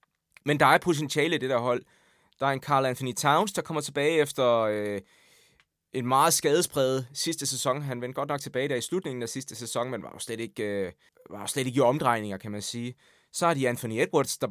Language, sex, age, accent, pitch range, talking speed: Danish, male, 20-39, native, 115-145 Hz, 230 wpm